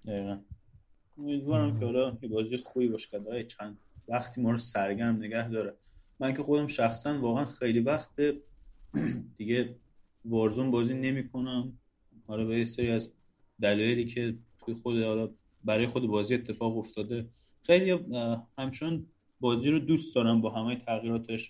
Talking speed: 140 wpm